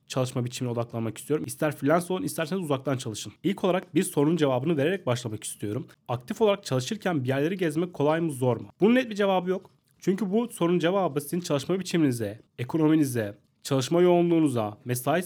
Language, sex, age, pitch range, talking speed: Turkish, male, 30-49, 130-175 Hz, 170 wpm